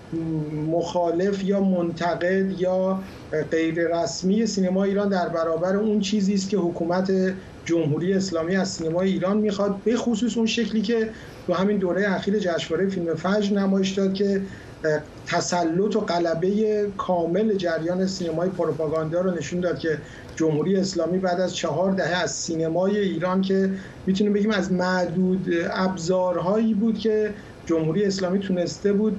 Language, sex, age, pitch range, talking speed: Persian, male, 50-69, 170-205 Hz, 140 wpm